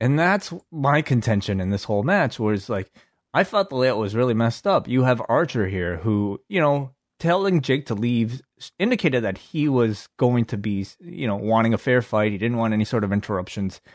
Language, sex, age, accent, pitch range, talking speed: English, male, 20-39, American, 110-155 Hz, 210 wpm